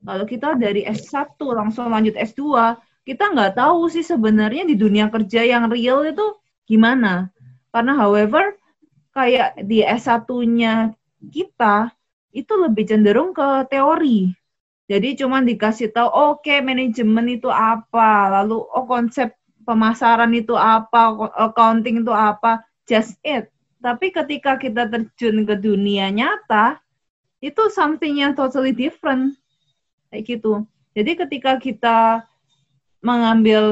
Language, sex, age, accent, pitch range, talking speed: English, female, 20-39, Indonesian, 220-275 Hz, 120 wpm